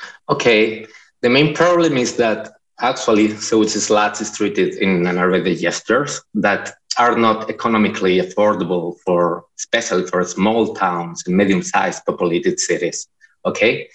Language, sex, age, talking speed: English, male, 20-39, 130 wpm